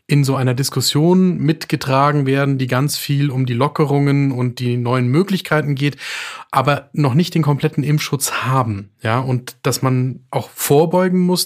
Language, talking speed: German, 160 wpm